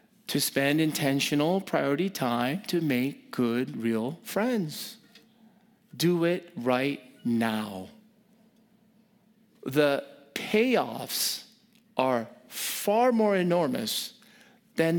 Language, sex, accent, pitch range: English, male, American, 150-225 Hz